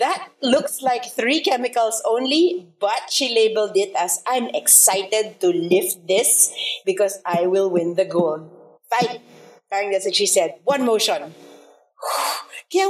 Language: English